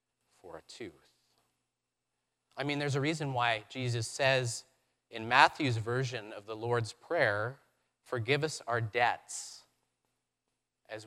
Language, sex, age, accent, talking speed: English, male, 30-49, American, 125 wpm